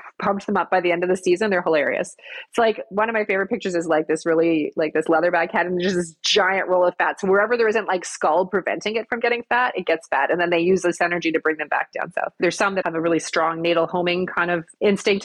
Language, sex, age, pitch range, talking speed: English, female, 30-49, 160-200 Hz, 285 wpm